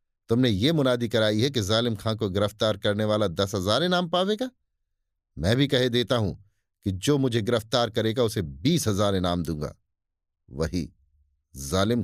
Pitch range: 95-130 Hz